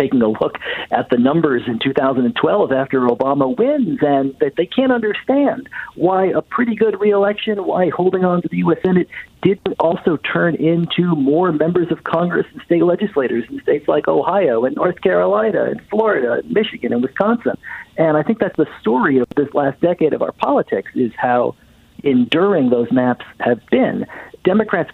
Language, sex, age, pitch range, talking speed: English, male, 50-69, 120-170 Hz, 175 wpm